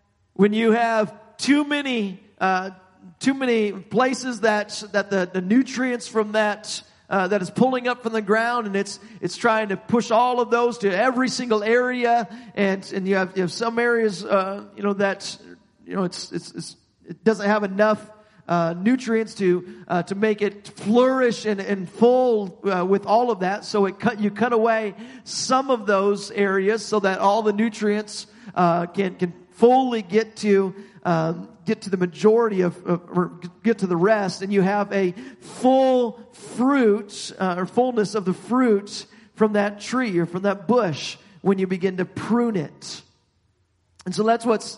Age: 40-59